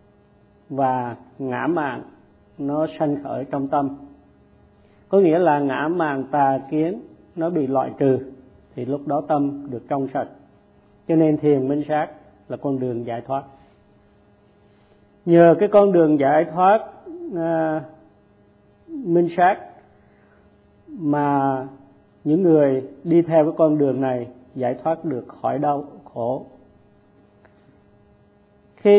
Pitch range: 120-160 Hz